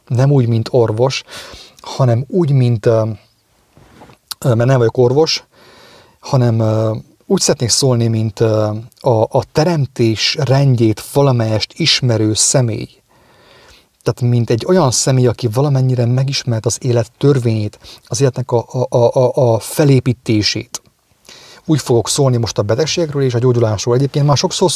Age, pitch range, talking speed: 30-49, 115-135 Hz, 130 wpm